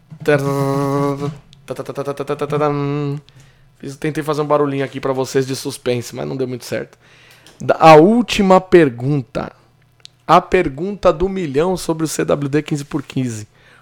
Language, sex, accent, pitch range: Portuguese, male, Brazilian, 130-170 Hz